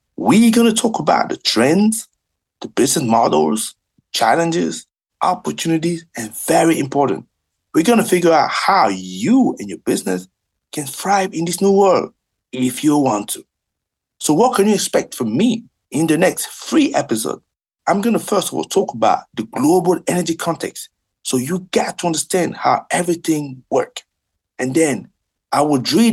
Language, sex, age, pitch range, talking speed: English, male, 60-79, 130-190 Hz, 165 wpm